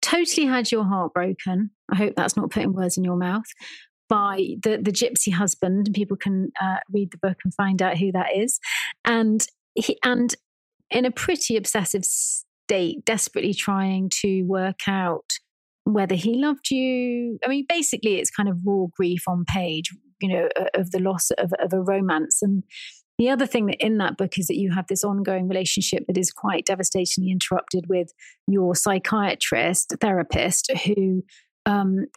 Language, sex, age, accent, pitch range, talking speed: English, female, 30-49, British, 185-220 Hz, 175 wpm